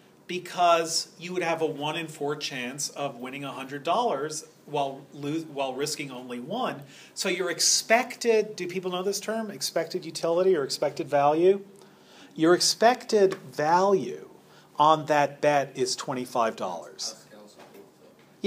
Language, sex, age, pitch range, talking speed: English, male, 40-59, 130-180 Hz, 125 wpm